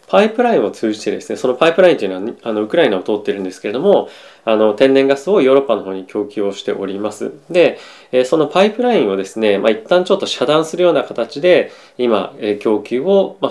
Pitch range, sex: 105-150 Hz, male